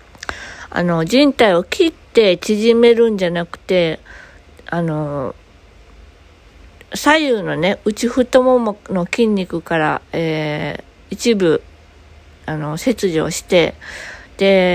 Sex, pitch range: female, 165-235 Hz